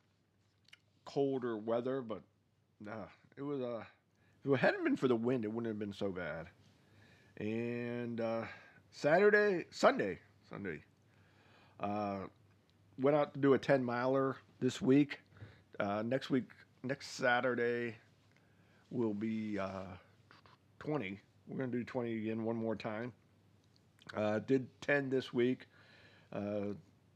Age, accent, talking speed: 40-59, American, 130 wpm